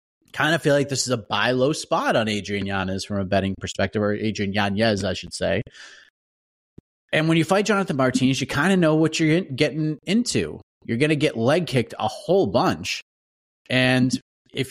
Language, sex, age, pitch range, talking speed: English, male, 30-49, 100-150 Hz, 200 wpm